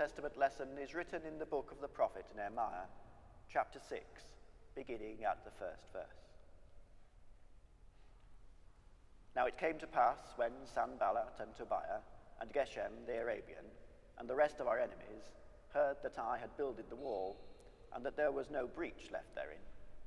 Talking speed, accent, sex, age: 155 wpm, British, male, 40-59